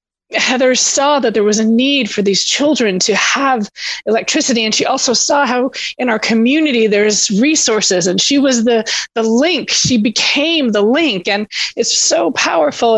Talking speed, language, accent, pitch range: 170 wpm, English, American, 205-245 Hz